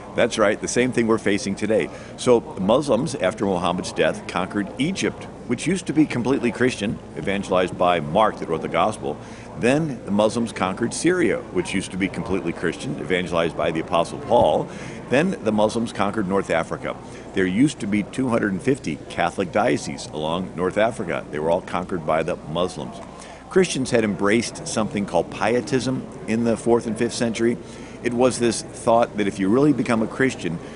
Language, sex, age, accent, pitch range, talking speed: English, male, 50-69, American, 95-120 Hz, 175 wpm